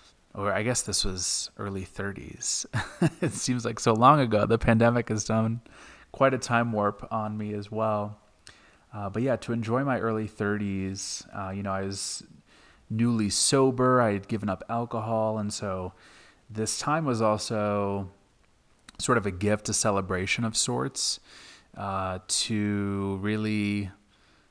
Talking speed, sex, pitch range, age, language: 150 wpm, male, 95-110 Hz, 30-49, English